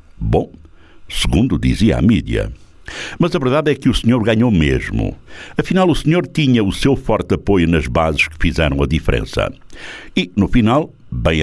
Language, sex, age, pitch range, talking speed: Portuguese, male, 60-79, 75-115 Hz, 170 wpm